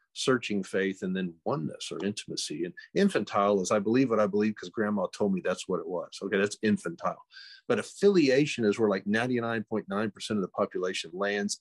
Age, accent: 50-69, American